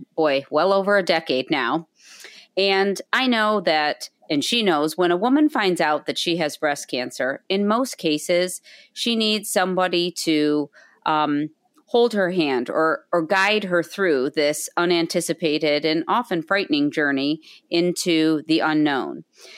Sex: female